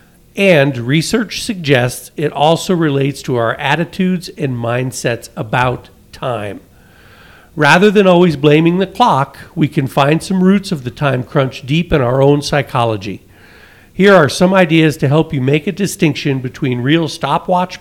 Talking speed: 155 wpm